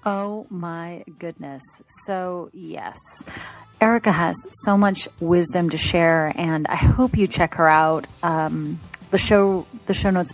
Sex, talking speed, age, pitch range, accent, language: female, 145 wpm, 30-49, 155-195 Hz, American, English